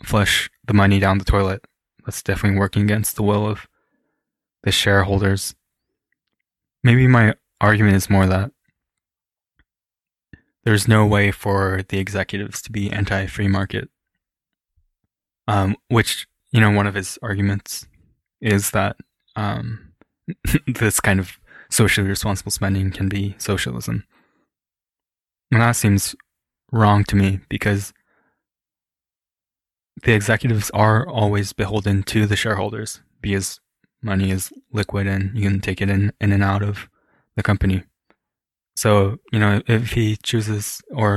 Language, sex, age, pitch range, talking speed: English, male, 20-39, 95-105 Hz, 130 wpm